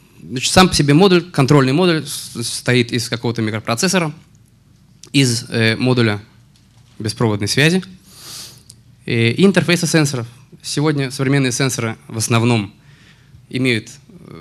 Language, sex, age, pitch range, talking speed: Russian, male, 20-39, 115-145 Hz, 105 wpm